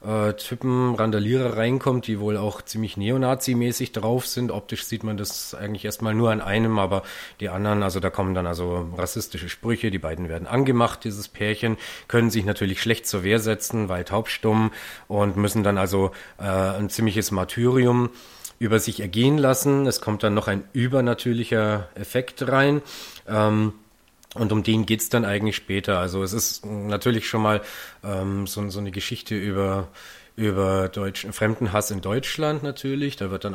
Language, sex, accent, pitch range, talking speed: German, male, German, 100-120 Hz, 170 wpm